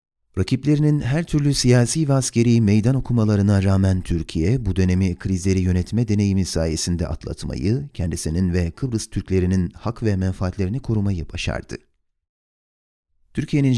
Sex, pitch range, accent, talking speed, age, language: male, 90-115 Hz, native, 120 wpm, 40-59, Turkish